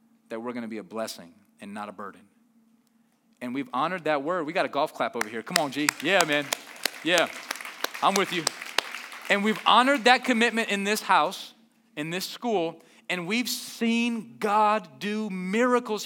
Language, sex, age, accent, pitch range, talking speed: English, male, 30-49, American, 170-240 Hz, 185 wpm